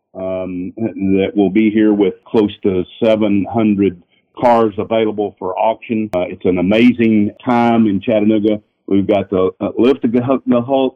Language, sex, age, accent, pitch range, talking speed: English, male, 50-69, American, 95-120 Hz, 150 wpm